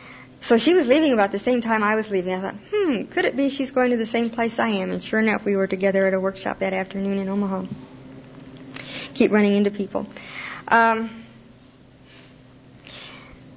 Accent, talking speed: American, 190 wpm